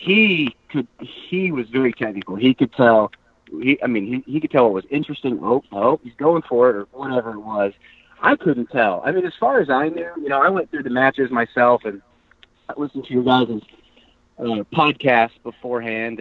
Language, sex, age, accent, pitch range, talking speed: English, male, 30-49, American, 110-140 Hz, 205 wpm